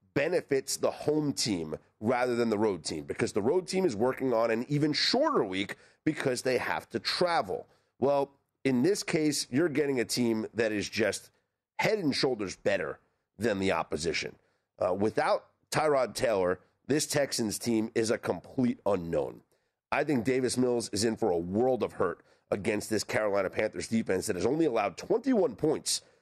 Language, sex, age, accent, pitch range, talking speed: English, male, 40-59, American, 110-150 Hz, 175 wpm